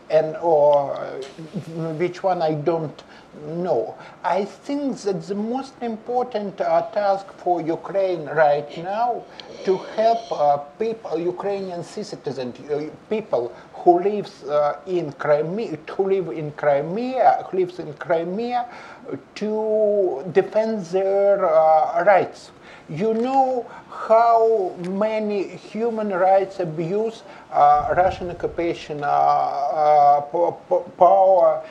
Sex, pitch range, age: male, 155-215 Hz, 50-69